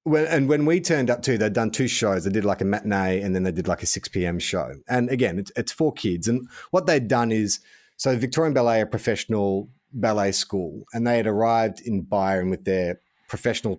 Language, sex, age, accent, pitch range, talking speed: English, male, 30-49, Australian, 95-120 Hz, 220 wpm